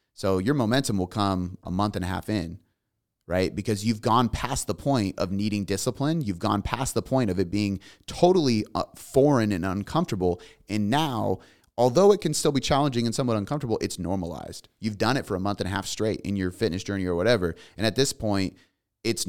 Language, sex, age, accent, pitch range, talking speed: English, male, 30-49, American, 95-115 Hz, 210 wpm